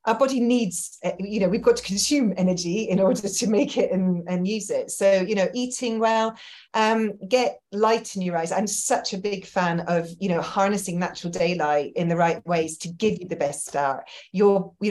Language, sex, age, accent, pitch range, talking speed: English, female, 30-49, British, 175-220 Hz, 210 wpm